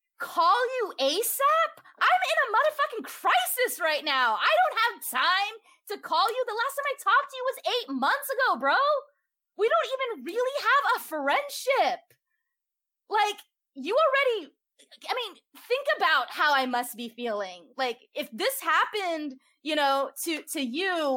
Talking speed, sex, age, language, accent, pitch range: 160 wpm, female, 20-39, English, American, 250-360 Hz